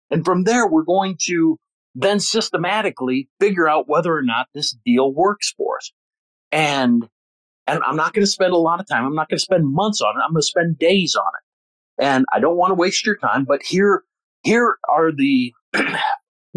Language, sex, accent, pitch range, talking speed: English, male, American, 140-205 Hz, 210 wpm